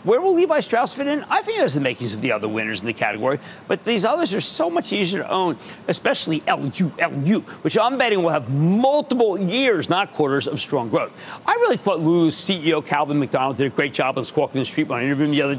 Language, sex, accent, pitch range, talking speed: English, male, American, 145-220 Hz, 240 wpm